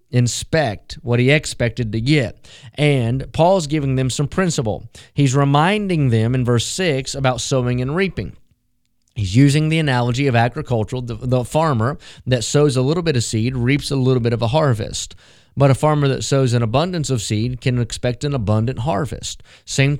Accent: American